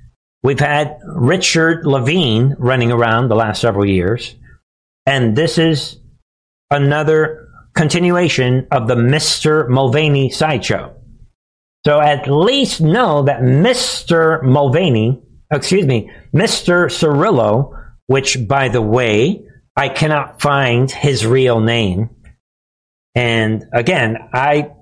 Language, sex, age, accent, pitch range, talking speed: English, male, 50-69, American, 120-155 Hz, 105 wpm